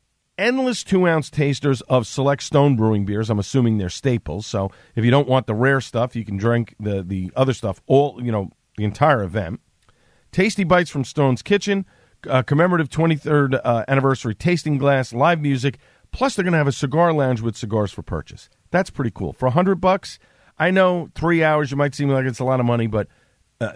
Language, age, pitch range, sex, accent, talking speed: English, 40-59, 110-145 Hz, male, American, 200 wpm